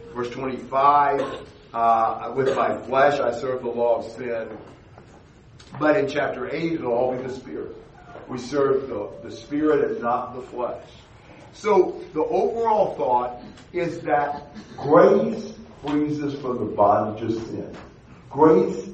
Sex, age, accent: male, 50-69, American